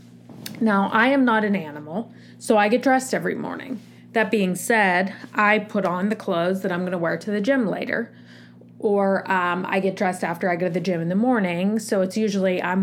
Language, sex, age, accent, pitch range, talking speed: English, female, 30-49, American, 165-215 Hz, 220 wpm